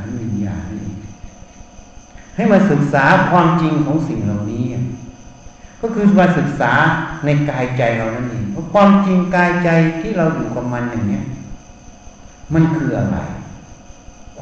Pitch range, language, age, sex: 110-165 Hz, Thai, 60-79, male